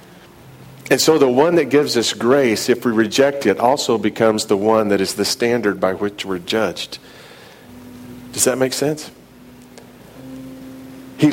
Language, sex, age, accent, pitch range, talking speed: English, male, 40-59, American, 105-135 Hz, 155 wpm